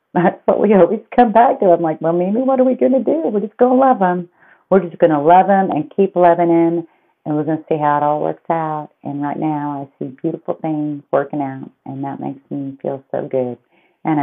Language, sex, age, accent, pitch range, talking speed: English, female, 40-59, American, 145-185 Hz, 255 wpm